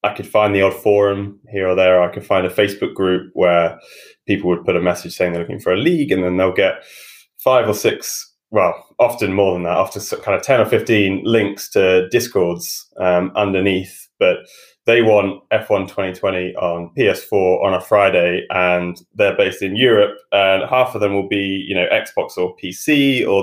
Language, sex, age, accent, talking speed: English, male, 20-39, British, 195 wpm